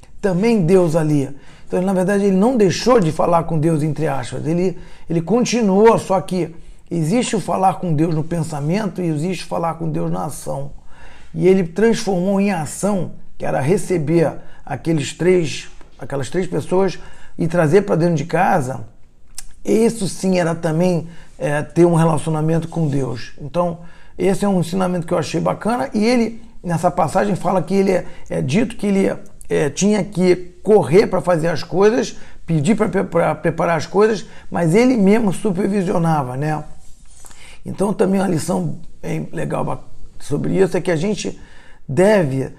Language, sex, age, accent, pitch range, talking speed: Portuguese, male, 40-59, Brazilian, 160-190 Hz, 165 wpm